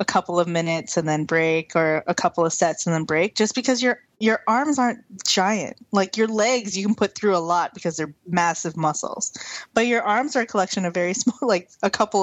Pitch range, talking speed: 175-230 Hz, 230 wpm